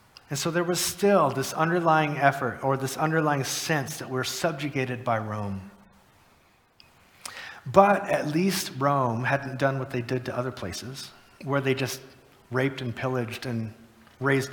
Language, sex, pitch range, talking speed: English, male, 120-160 Hz, 155 wpm